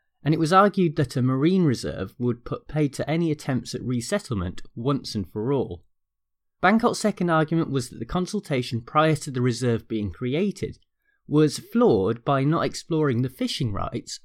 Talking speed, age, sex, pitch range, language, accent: 175 wpm, 30-49, male, 120-170 Hz, English, British